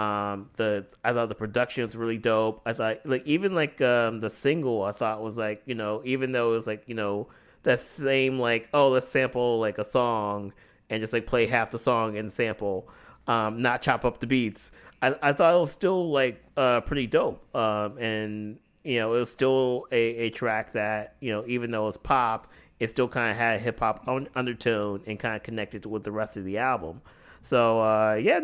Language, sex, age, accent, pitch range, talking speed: English, male, 30-49, American, 110-130 Hz, 220 wpm